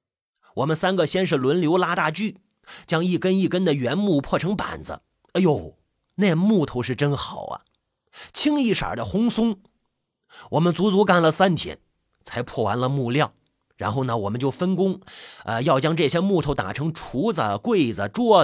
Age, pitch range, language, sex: 30-49, 130-200 Hz, Chinese, male